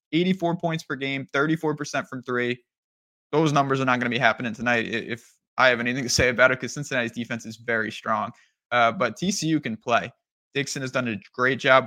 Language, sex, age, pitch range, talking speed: English, male, 20-39, 125-150 Hz, 205 wpm